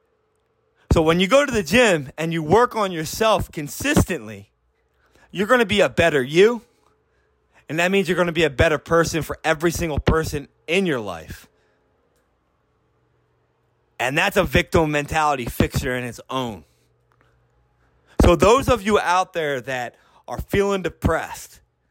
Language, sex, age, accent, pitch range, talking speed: English, male, 30-49, American, 135-190 Hz, 155 wpm